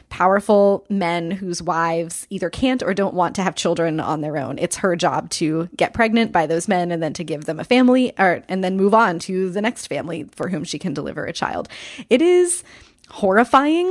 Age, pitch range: 20-39, 170-205 Hz